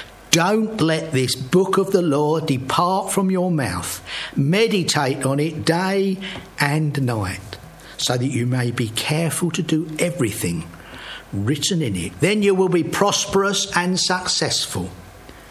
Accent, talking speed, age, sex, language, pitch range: British, 140 wpm, 60-79, male, English, 115-170 Hz